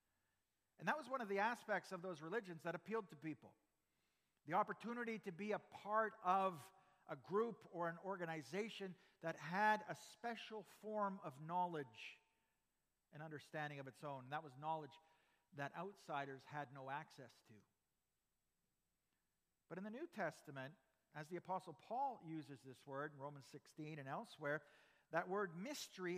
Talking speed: 155 wpm